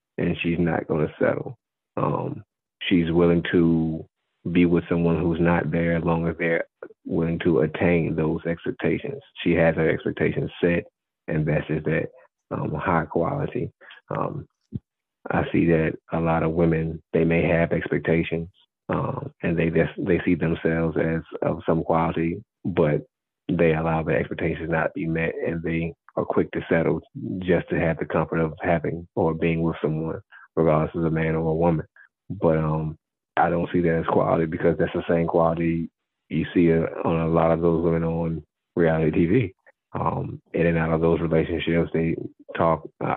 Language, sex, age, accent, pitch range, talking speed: English, male, 30-49, American, 80-85 Hz, 175 wpm